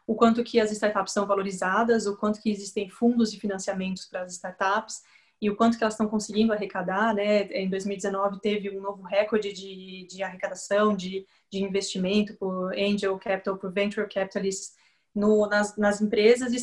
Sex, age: female, 20-39